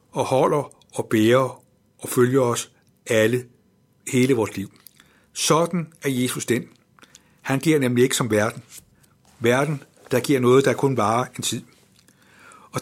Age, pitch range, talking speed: 60-79, 120-145 Hz, 145 wpm